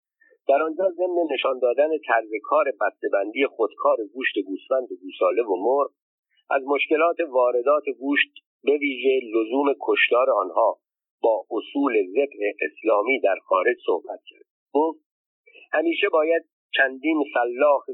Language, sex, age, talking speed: Persian, male, 50-69, 125 wpm